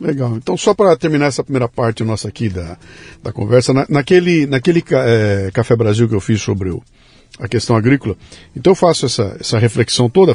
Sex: male